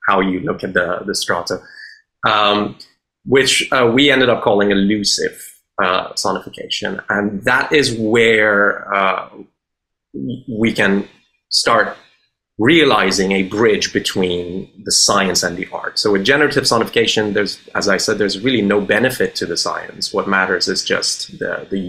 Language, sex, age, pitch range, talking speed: English, male, 30-49, 95-115 Hz, 150 wpm